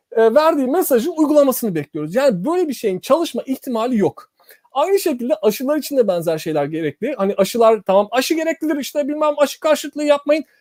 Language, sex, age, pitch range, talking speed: Turkish, male, 30-49, 225-305 Hz, 165 wpm